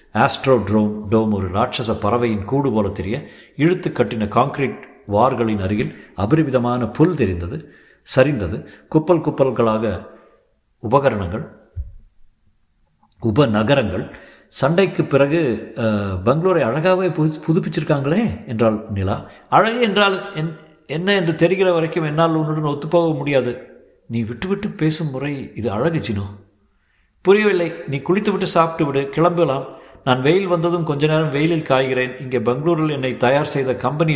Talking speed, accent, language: 110 wpm, native, Tamil